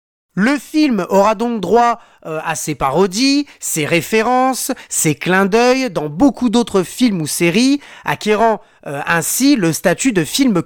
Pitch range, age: 175-265 Hz, 30-49